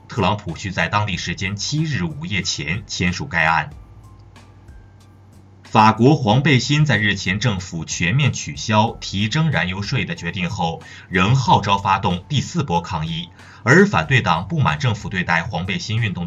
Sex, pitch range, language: male, 90-135 Hz, Chinese